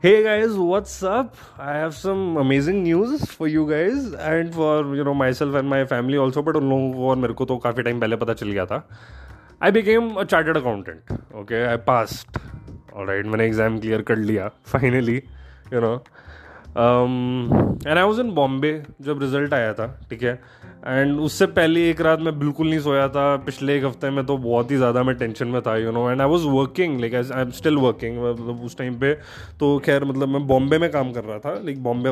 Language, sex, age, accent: Hindi, male, 20-39, native